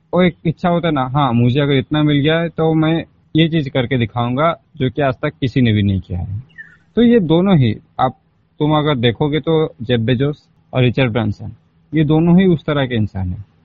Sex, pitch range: male, 125-160 Hz